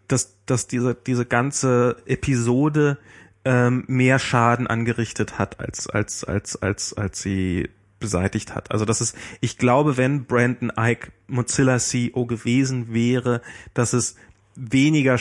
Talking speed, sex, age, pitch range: 140 wpm, male, 30-49, 110-125 Hz